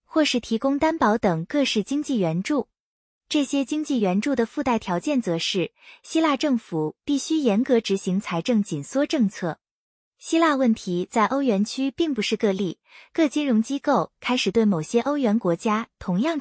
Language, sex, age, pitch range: Chinese, female, 20-39, 195-280 Hz